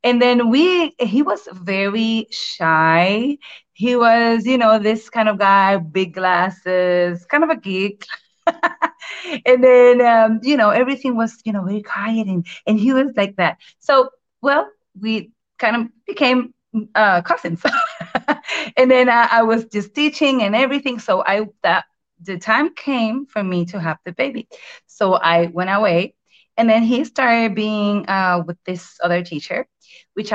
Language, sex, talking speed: English, female, 160 wpm